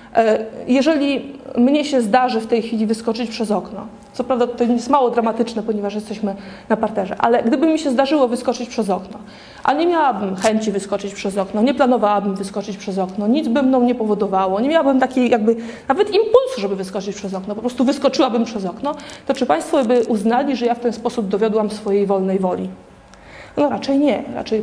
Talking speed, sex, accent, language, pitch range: 190 wpm, female, native, Polish, 205-260 Hz